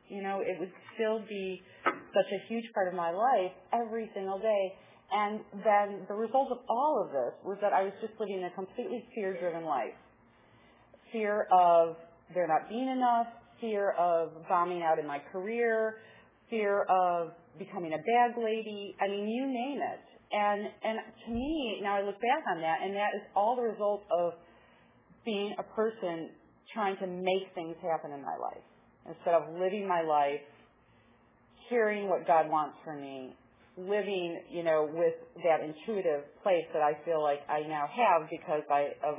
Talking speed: 175 wpm